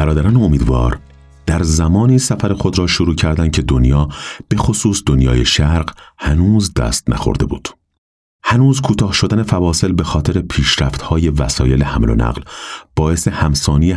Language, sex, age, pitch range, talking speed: Persian, male, 30-49, 70-90 Hz, 140 wpm